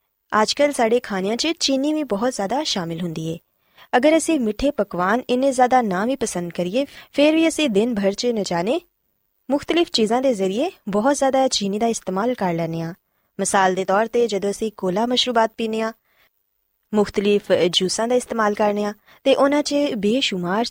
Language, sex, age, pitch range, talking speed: Punjabi, female, 20-39, 190-265 Hz, 175 wpm